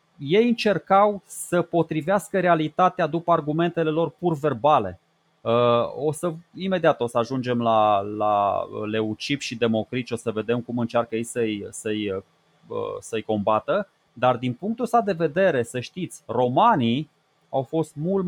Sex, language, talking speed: male, Romanian, 140 wpm